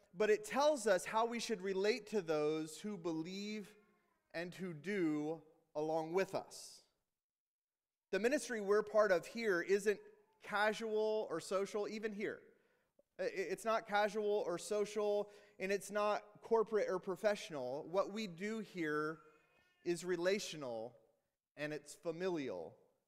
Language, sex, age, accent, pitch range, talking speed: English, male, 30-49, American, 155-210 Hz, 130 wpm